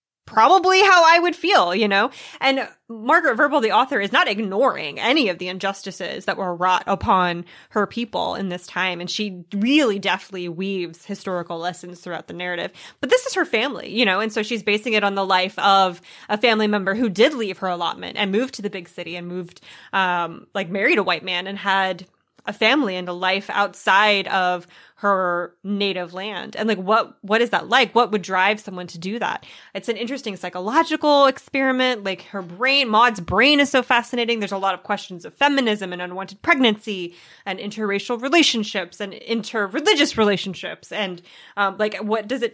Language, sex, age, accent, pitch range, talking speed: English, female, 20-39, American, 185-230 Hz, 195 wpm